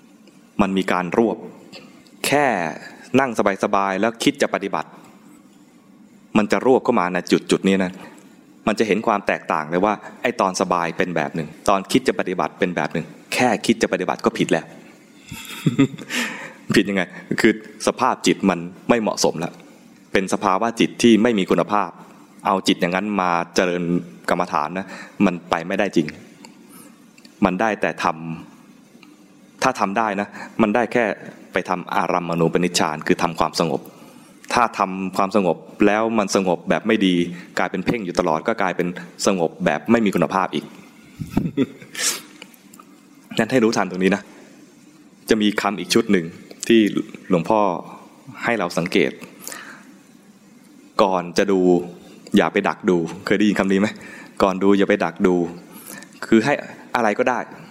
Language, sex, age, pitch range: English, male, 20-39, 90-105 Hz